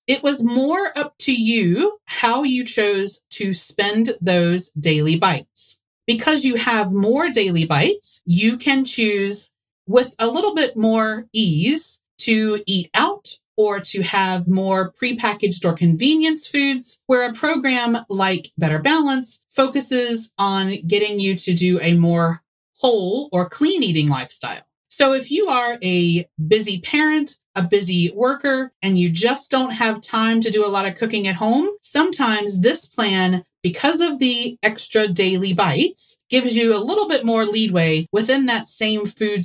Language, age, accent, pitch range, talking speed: English, 30-49, American, 190-265 Hz, 155 wpm